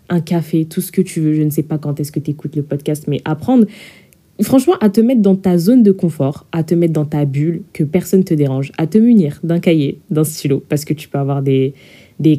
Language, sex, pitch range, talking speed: French, female, 145-185 Hz, 260 wpm